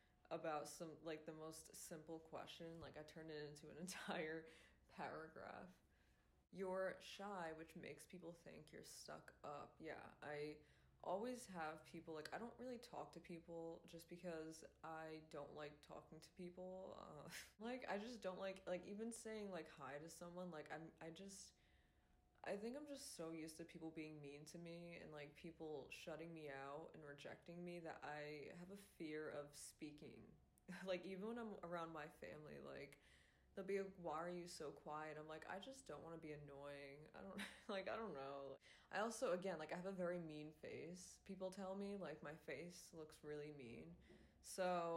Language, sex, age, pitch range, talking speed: English, female, 20-39, 150-180 Hz, 185 wpm